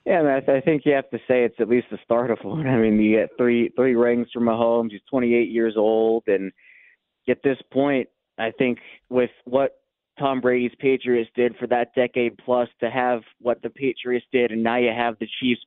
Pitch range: 115-130 Hz